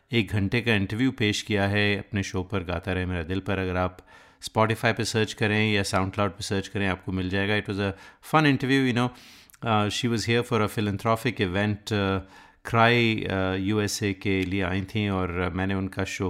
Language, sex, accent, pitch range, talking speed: Hindi, male, native, 95-110 Hz, 200 wpm